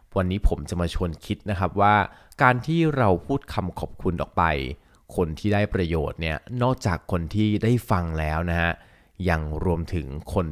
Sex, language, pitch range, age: male, Thai, 85-110 Hz, 20-39